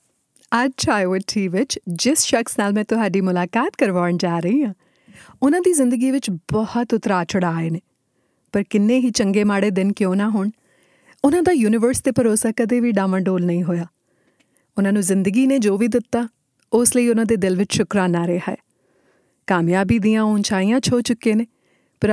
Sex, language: female, Punjabi